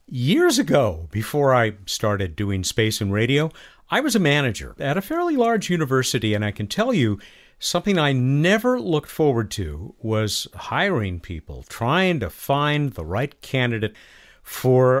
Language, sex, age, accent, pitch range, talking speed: English, male, 50-69, American, 105-165 Hz, 155 wpm